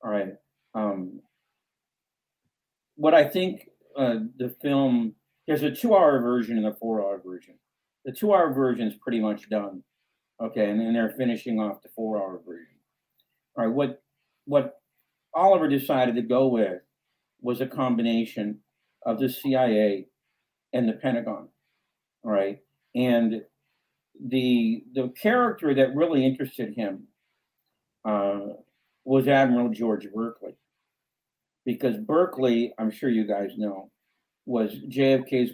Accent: American